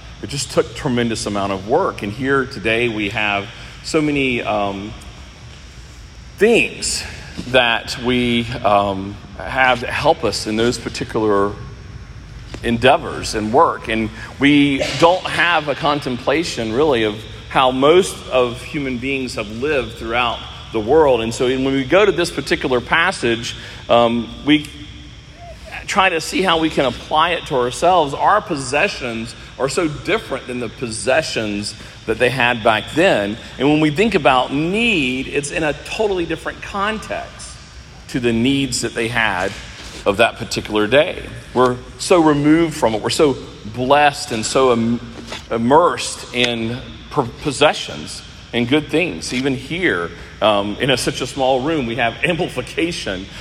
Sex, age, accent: male, 40-59, American